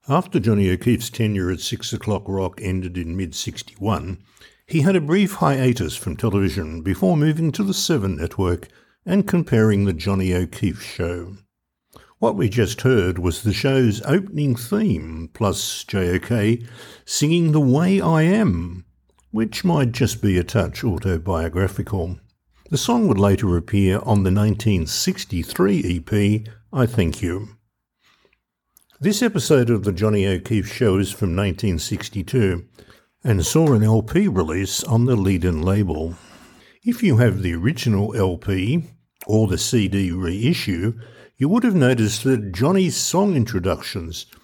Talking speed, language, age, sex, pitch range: 140 wpm, English, 60-79, male, 95-130 Hz